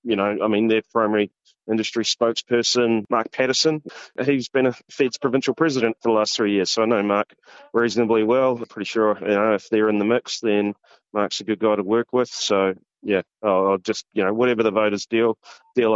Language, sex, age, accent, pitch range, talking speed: English, male, 20-39, Australian, 125-200 Hz, 210 wpm